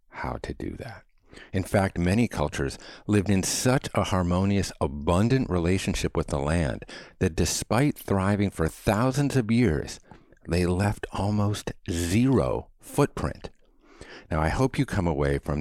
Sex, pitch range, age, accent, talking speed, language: male, 80-105 Hz, 50-69, American, 140 wpm, English